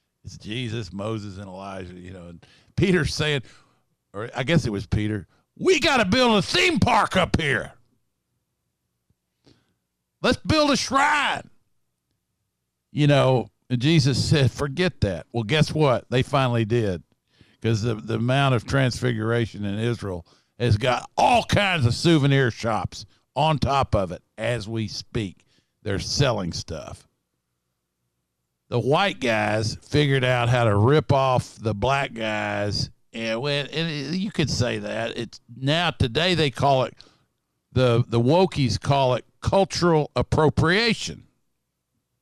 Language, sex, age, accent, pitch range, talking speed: English, male, 50-69, American, 105-145 Hz, 140 wpm